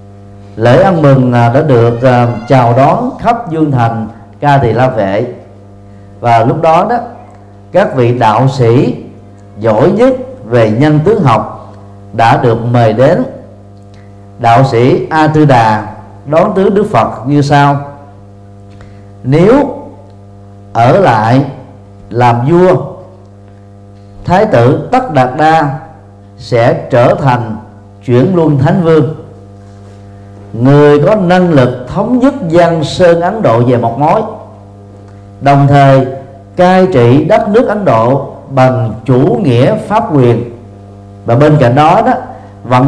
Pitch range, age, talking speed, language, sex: 100-145 Hz, 40-59, 130 wpm, Vietnamese, male